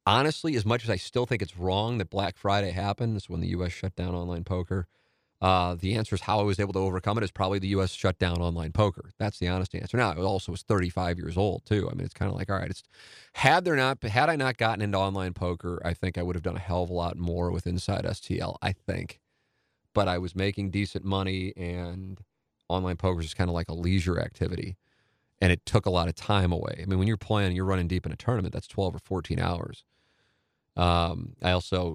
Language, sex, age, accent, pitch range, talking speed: English, male, 30-49, American, 90-110 Hz, 245 wpm